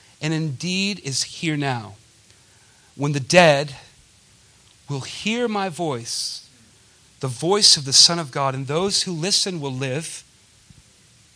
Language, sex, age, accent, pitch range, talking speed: English, male, 40-59, American, 125-185 Hz, 130 wpm